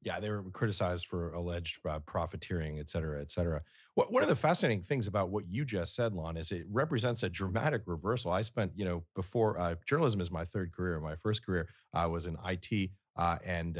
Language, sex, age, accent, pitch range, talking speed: English, male, 40-59, American, 85-110 Hz, 215 wpm